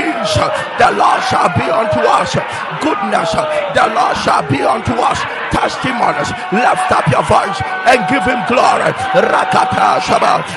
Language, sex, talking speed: English, male, 135 wpm